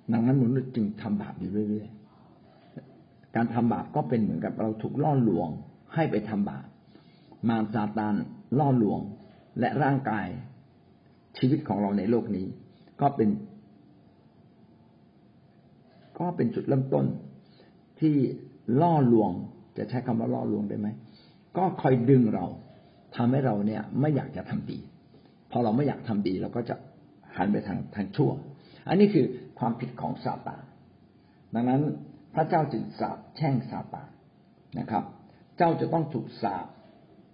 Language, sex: Thai, male